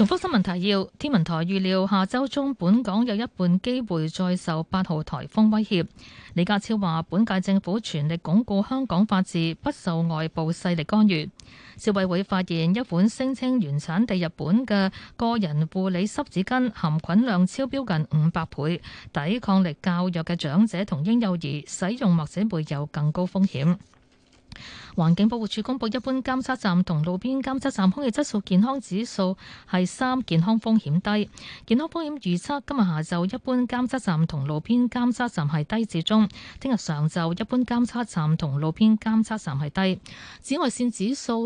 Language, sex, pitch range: Chinese, female, 170-230 Hz